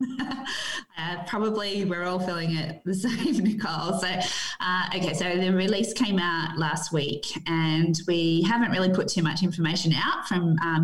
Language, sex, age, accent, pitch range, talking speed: English, female, 20-39, Australian, 165-215 Hz, 165 wpm